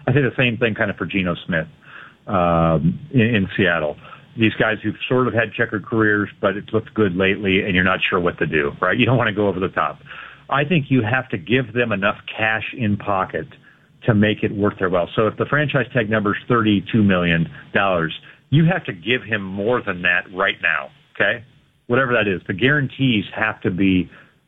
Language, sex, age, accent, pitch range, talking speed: English, male, 40-59, American, 100-130 Hz, 215 wpm